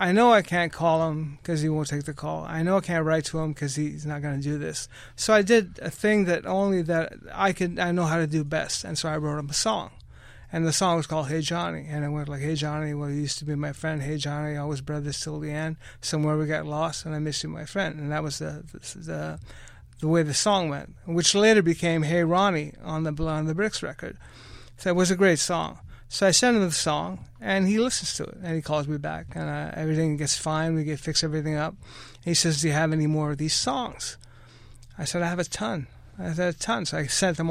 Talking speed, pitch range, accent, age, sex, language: 260 wpm, 150-175 Hz, American, 30-49, male, English